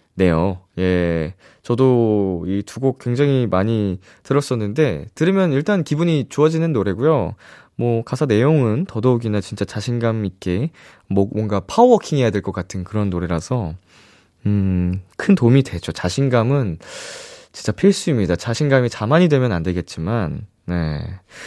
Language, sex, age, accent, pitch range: Korean, male, 20-39, native, 105-165 Hz